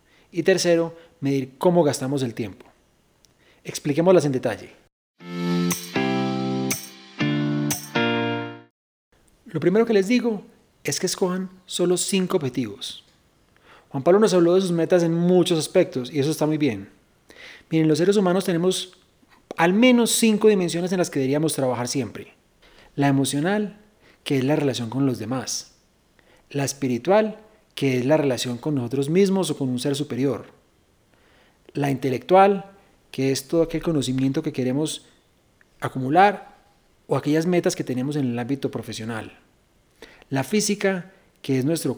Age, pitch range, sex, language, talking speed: 30-49, 130-185 Hz, male, Spanish, 140 wpm